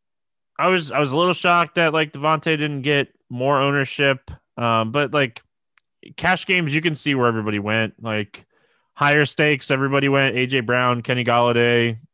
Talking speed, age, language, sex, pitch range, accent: 170 wpm, 20-39, English, male, 115-140 Hz, American